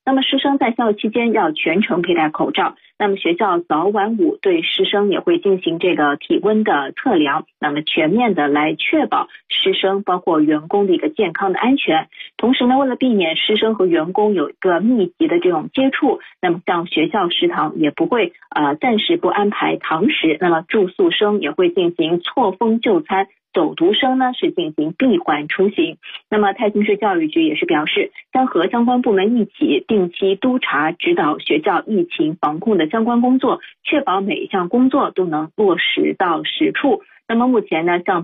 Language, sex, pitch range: Chinese, female, 190-300 Hz